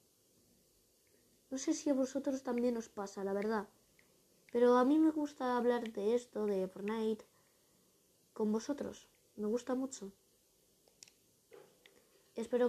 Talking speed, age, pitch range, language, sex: 125 wpm, 20-39, 210-300 Hz, Spanish, female